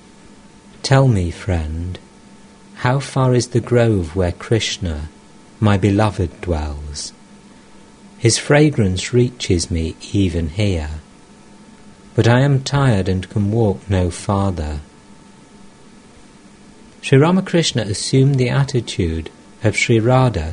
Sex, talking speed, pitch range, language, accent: male, 105 wpm, 85-125 Hz, English, British